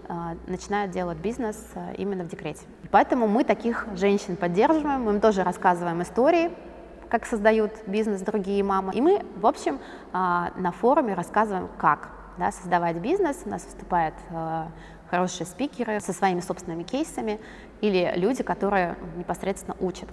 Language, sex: Russian, female